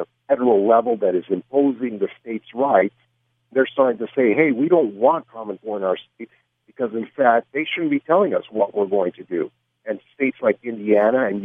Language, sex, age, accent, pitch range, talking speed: English, male, 60-79, American, 105-140 Hz, 205 wpm